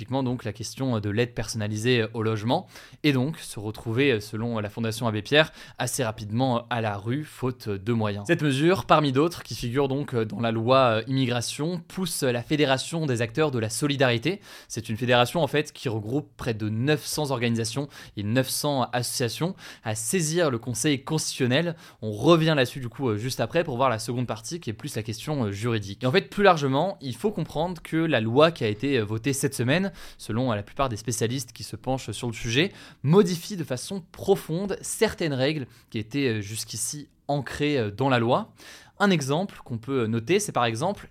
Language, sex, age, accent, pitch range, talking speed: French, male, 20-39, French, 120-155 Hz, 190 wpm